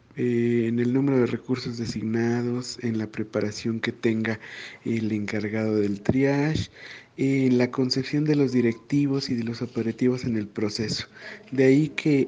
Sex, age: male, 50-69